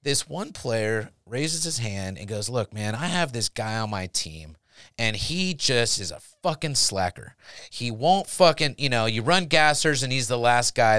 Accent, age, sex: American, 30-49, male